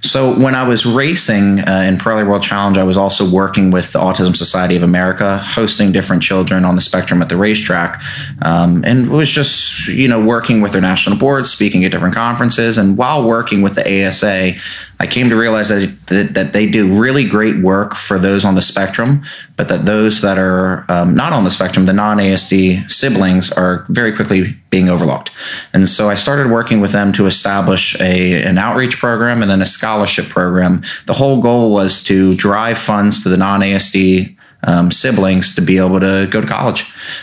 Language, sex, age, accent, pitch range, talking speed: English, male, 20-39, American, 95-110 Hz, 195 wpm